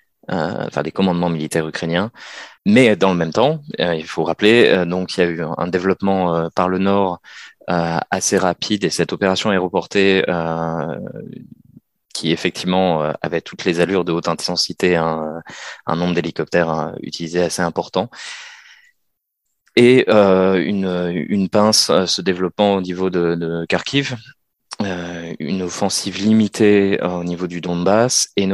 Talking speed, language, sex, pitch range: 160 wpm, French, male, 85-100 Hz